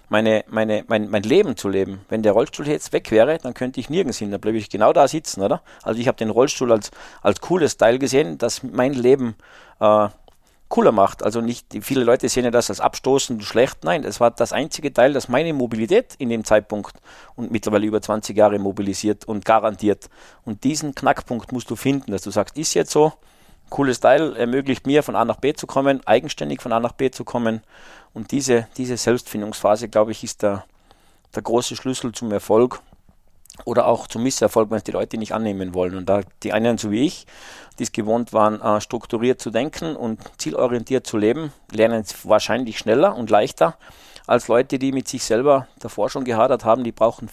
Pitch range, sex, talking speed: 105-125 Hz, male, 205 wpm